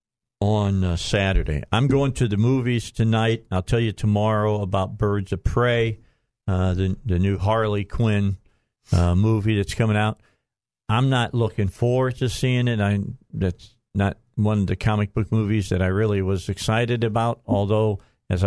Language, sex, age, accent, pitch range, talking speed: English, male, 50-69, American, 95-115 Hz, 170 wpm